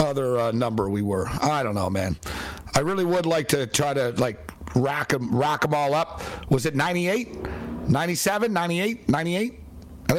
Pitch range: 115-155 Hz